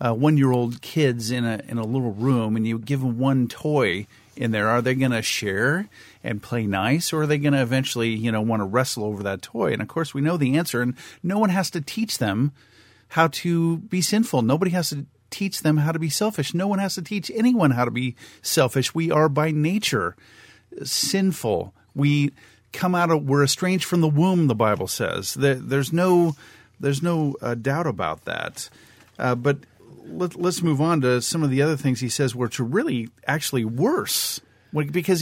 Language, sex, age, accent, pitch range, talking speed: English, male, 40-59, American, 120-155 Hz, 205 wpm